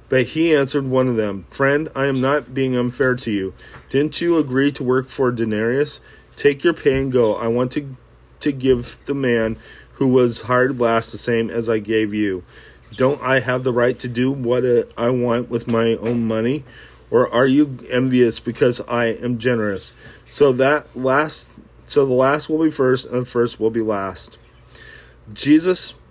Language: English